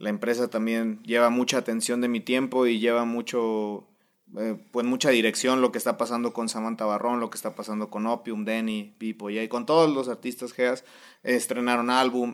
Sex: male